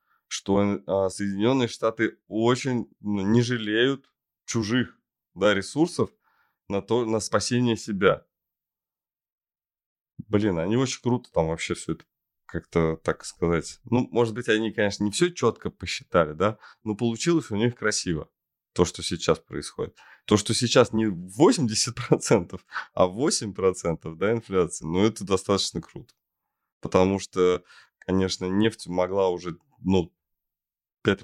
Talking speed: 130 wpm